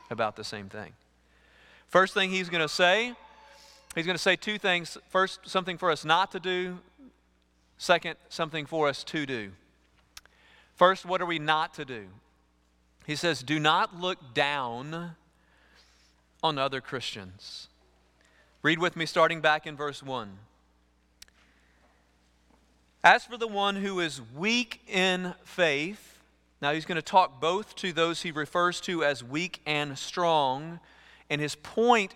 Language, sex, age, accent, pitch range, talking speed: English, male, 40-59, American, 120-175 Hz, 150 wpm